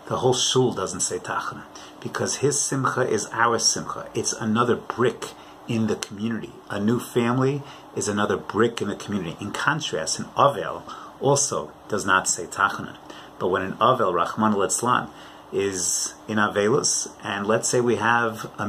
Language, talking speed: English, 155 wpm